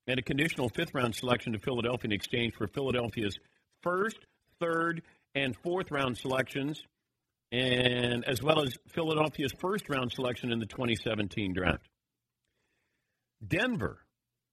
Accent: American